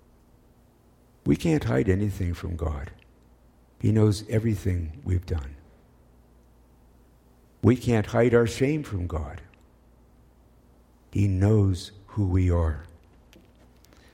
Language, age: English, 60-79